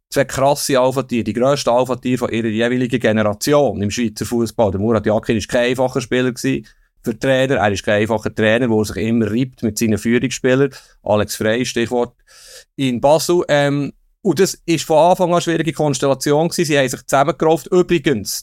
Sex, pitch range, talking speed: male, 115-140 Hz, 180 wpm